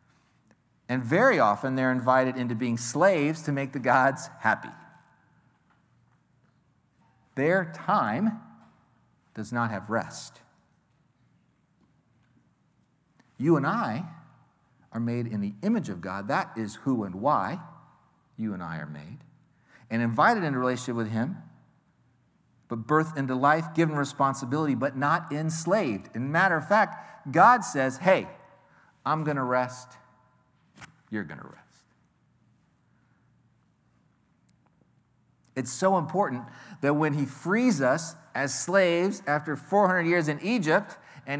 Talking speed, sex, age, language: 125 wpm, male, 50-69, English